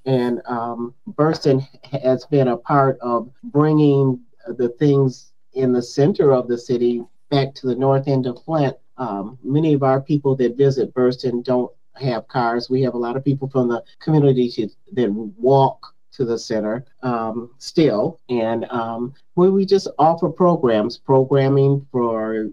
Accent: American